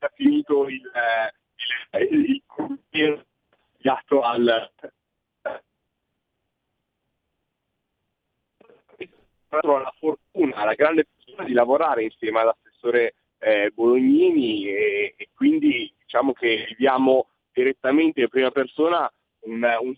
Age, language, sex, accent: 40-59, Italian, male, native